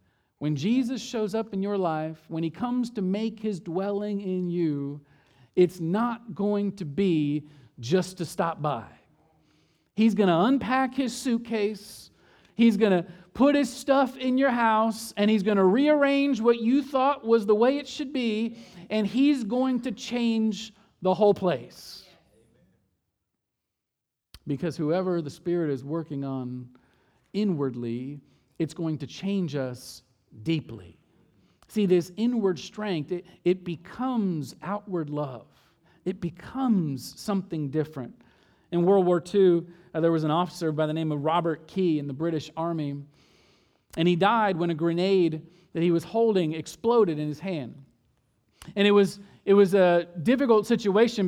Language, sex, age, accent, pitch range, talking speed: English, male, 40-59, American, 155-215 Hz, 150 wpm